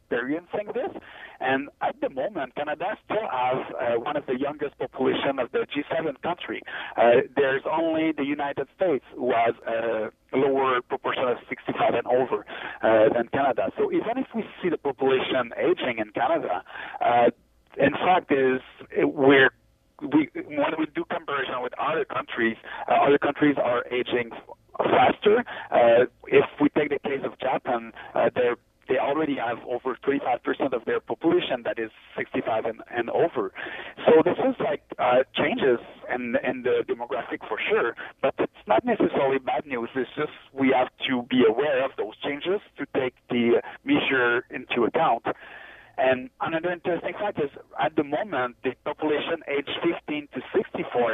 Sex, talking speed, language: male, 160 wpm, English